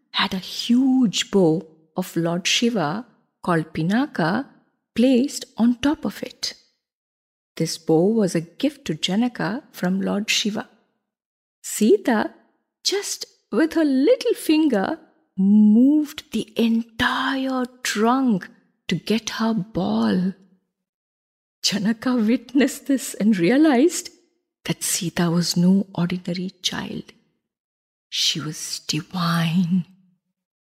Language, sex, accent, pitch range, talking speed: English, female, Indian, 180-250 Hz, 100 wpm